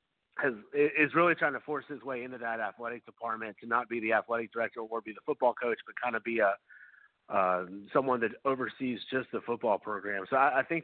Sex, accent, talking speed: male, American, 220 wpm